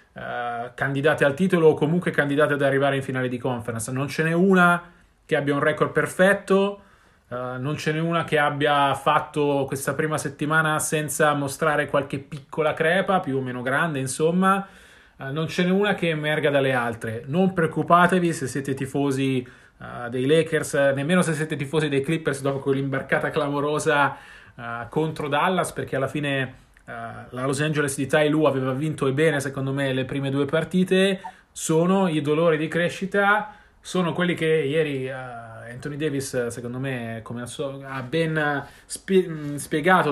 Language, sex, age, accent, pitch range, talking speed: Italian, male, 30-49, native, 135-170 Hz, 155 wpm